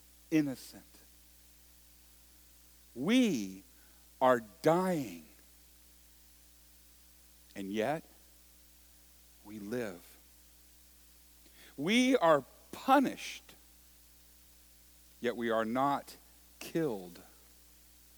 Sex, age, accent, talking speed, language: male, 50-69, American, 55 wpm, English